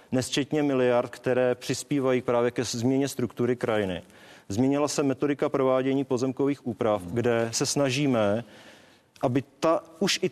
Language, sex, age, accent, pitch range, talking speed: Czech, male, 40-59, native, 115-135 Hz, 130 wpm